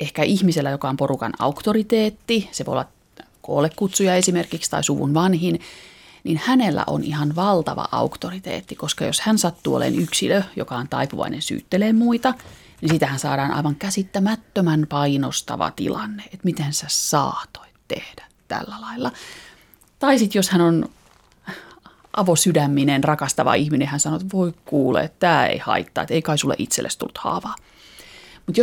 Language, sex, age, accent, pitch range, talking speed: Finnish, female, 30-49, native, 150-195 Hz, 145 wpm